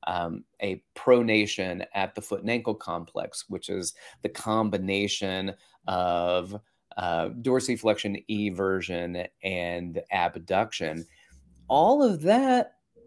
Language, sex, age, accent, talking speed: English, male, 30-49, American, 100 wpm